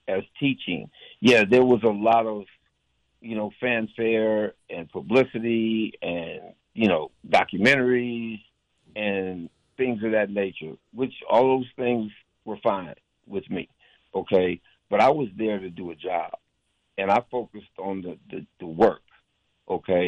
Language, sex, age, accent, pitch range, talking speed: English, male, 60-79, American, 95-115 Hz, 140 wpm